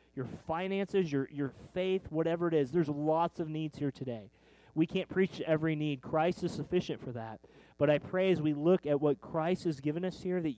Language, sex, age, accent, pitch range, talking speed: English, male, 30-49, American, 130-165 Hz, 220 wpm